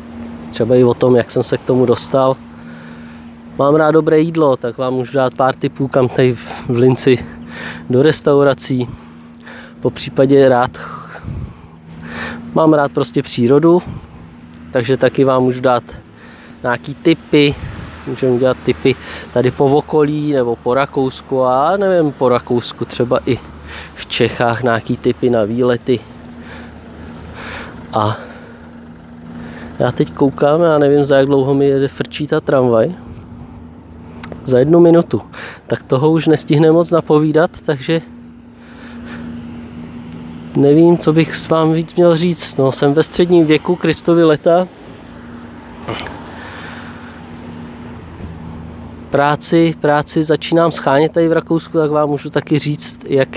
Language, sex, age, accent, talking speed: Czech, male, 20-39, native, 125 wpm